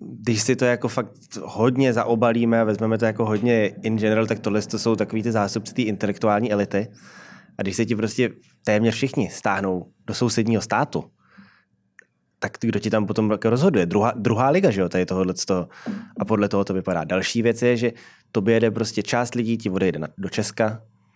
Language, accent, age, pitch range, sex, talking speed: Czech, native, 20-39, 105-120 Hz, male, 185 wpm